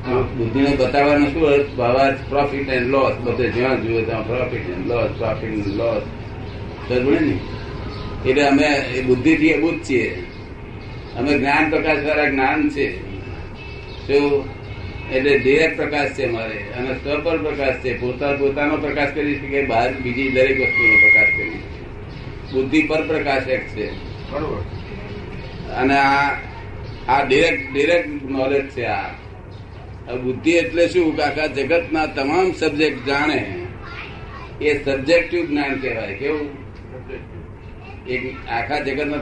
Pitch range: 110-145 Hz